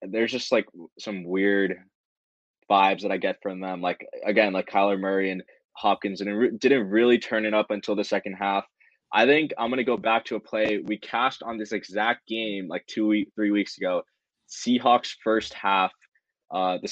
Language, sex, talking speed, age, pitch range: English, male, 200 wpm, 20-39, 95-110 Hz